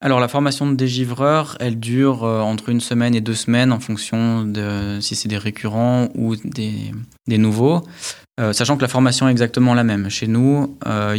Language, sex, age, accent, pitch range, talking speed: French, male, 20-39, French, 105-120 Hz, 200 wpm